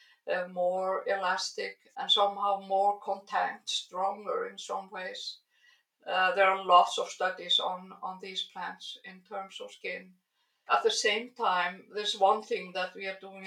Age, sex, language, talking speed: 60-79, female, English, 160 wpm